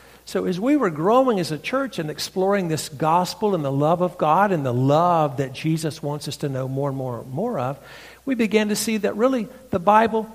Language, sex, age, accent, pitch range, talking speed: English, male, 60-79, American, 140-185 Hz, 230 wpm